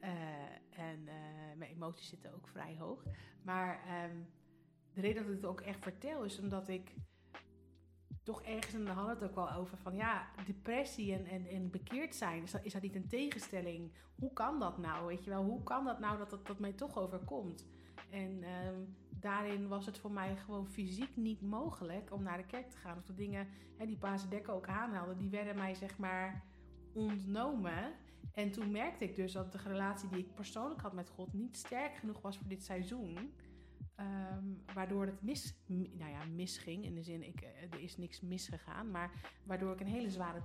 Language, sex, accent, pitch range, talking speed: Dutch, female, Dutch, 175-205 Hz, 205 wpm